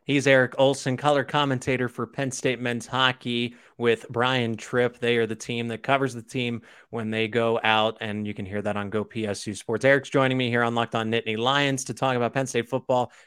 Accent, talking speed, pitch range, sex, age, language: American, 220 wpm, 115-135 Hz, male, 30-49, English